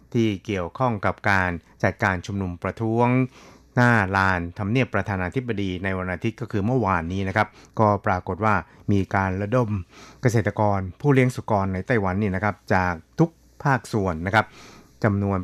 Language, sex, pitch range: Thai, male, 95-115 Hz